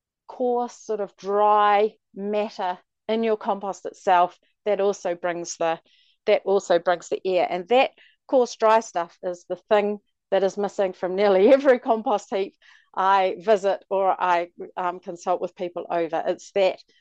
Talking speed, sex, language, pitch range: 160 wpm, female, English, 185-225 Hz